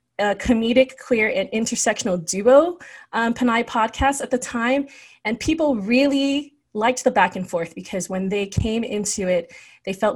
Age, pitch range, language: 30-49, 195-245 Hz, English